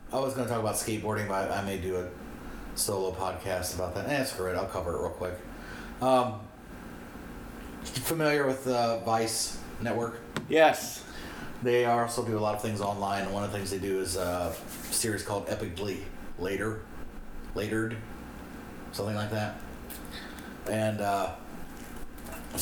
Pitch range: 90-115 Hz